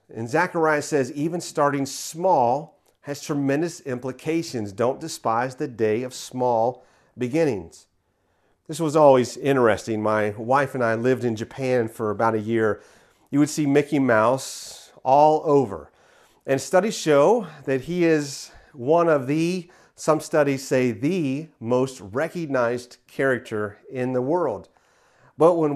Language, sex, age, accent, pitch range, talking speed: English, male, 40-59, American, 125-160 Hz, 135 wpm